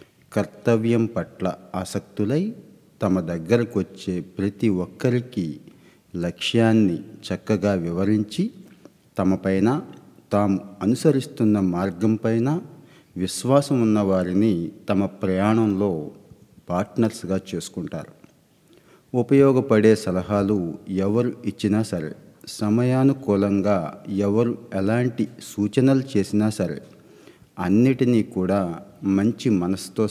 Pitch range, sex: 95-115 Hz, male